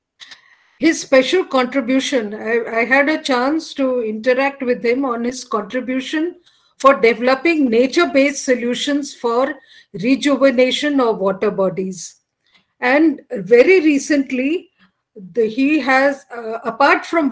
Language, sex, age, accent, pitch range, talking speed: Hindi, female, 50-69, native, 220-275 Hz, 120 wpm